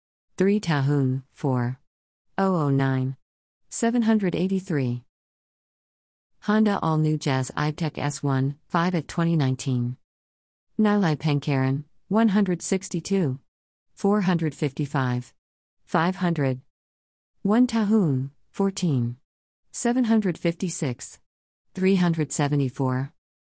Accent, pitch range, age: American, 130-175 Hz, 50-69